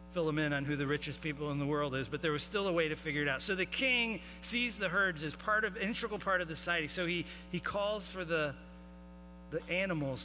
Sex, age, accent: male, 40-59, American